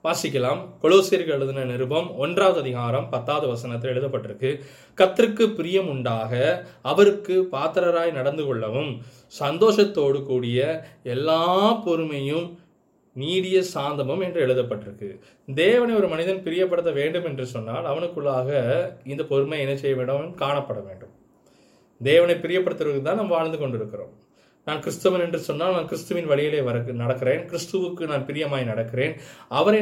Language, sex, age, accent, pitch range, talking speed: Tamil, male, 20-39, native, 130-180 Hz, 110 wpm